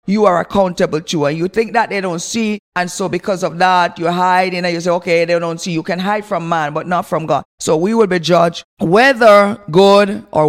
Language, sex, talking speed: English, female, 240 wpm